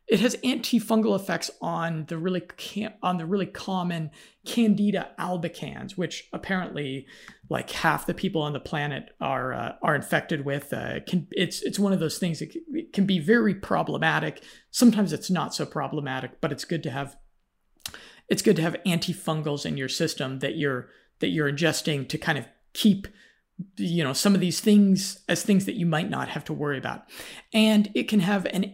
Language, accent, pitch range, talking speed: English, American, 165-215 Hz, 185 wpm